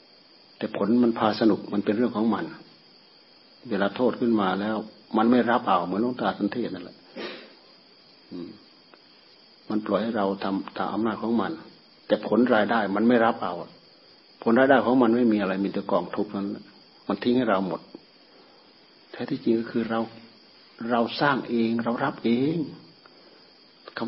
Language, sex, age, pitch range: Thai, male, 60-79, 105-120 Hz